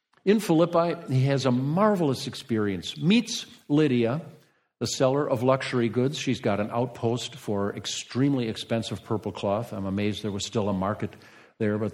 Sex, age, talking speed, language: male, 50-69, 160 wpm, English